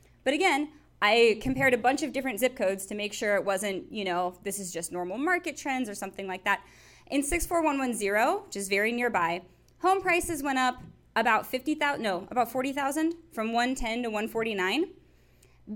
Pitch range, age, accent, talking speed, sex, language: 205-275 Hz, 20-39, American, 210 wpm, female, English